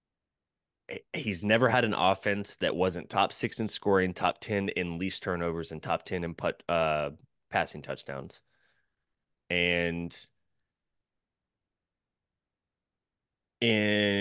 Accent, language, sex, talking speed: American, English, male, 110 wpm